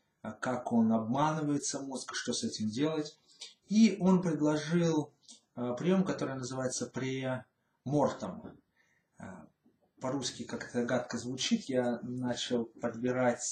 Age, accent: 30-49, native